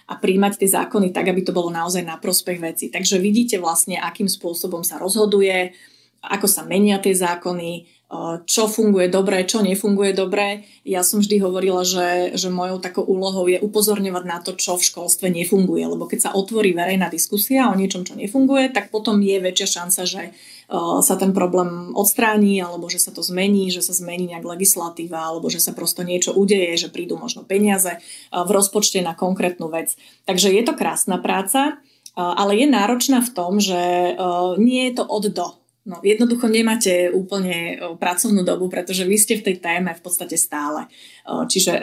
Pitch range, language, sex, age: 180-205 Hz, Slovak, female, 20-39